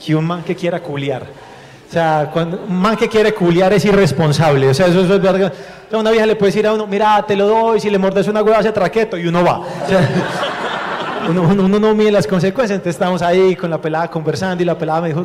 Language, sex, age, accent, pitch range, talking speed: Spanish, male, 30-49, Colombian, 170-210 Hz, 245 wpm